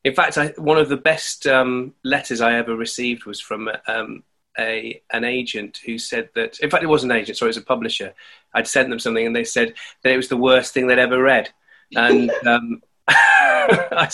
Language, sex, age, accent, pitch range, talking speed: English, male, 30-49, British, 115-150 Hz, 220 wpm